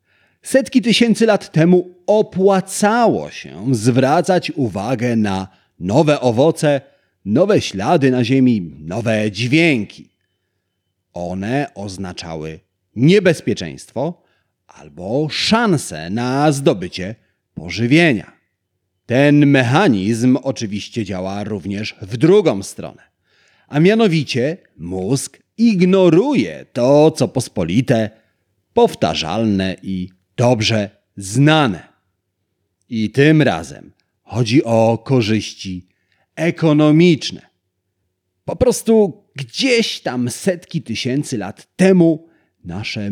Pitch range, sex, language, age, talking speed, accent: 95-160 Hz, male, Polish, 40-59, 85 wpm, native